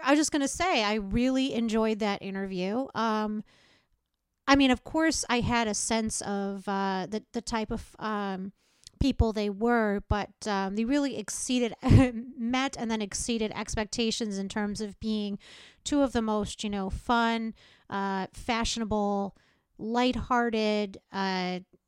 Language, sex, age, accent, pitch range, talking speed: English, female, 30-49, American, 210-250 Hz, 150 wpm